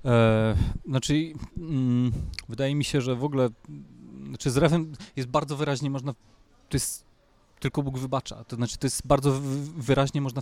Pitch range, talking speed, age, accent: 110-130 Hz, 150 wpm, 30-49, native